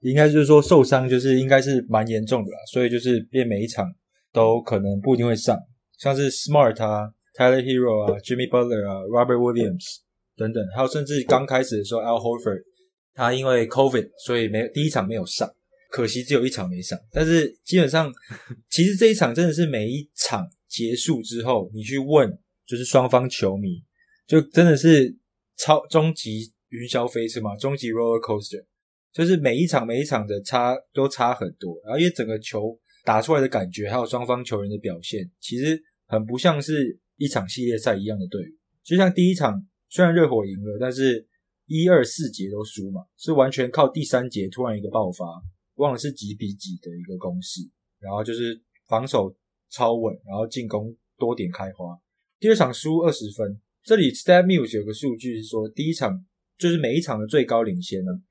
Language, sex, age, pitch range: English, male, 20-39, 110-150 Hz